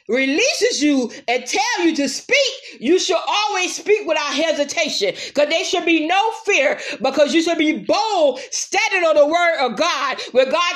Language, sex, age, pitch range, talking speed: English, female, 40-59, 275-360 Hz, 180 wpm